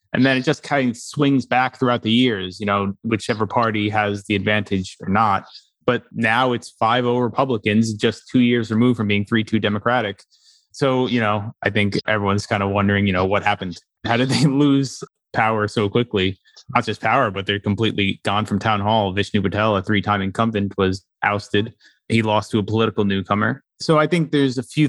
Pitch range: 105-125 Hz